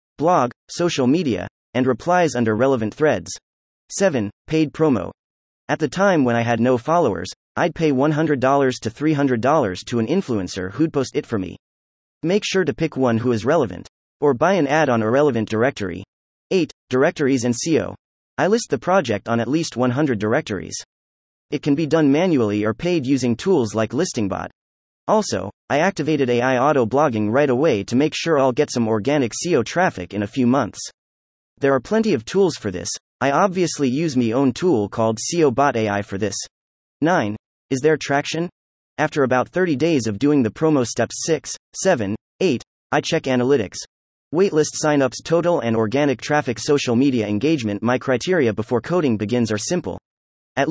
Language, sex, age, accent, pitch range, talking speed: English, male, 30-49, American, 115-155 Hz, 175 wpm